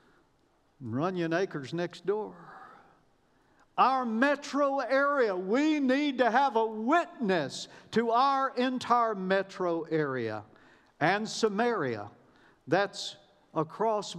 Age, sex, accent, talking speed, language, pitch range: 50-69, male, American, 95 wpm, English, 130-215 Hz